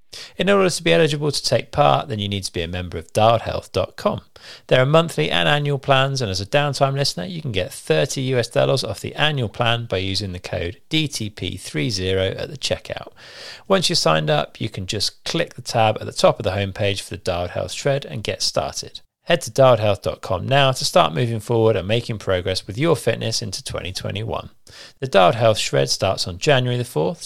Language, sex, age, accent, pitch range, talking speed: English, male, 40-59, British, 100-145 Hz, 210 wpm